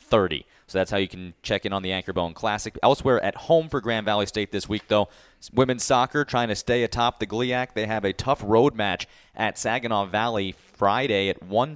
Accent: American